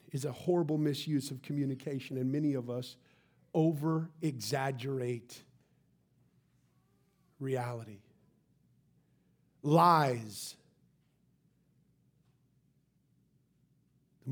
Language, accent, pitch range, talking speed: English, American, 125-170 Hz, 65 wpm